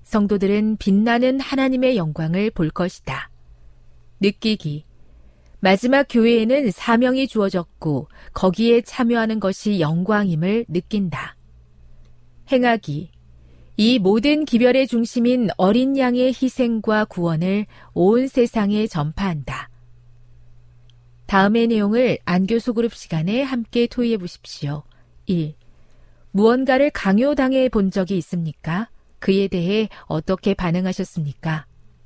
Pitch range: 150-235 Hz